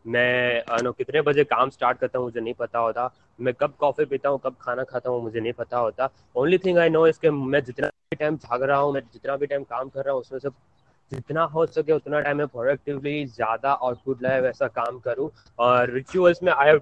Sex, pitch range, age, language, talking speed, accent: male, 130-155 Hz, 20-39, Hindi, 165 wpm, native